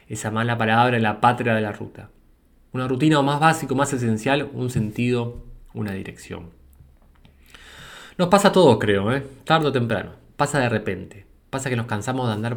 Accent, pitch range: Argentinian, 100-125 Hz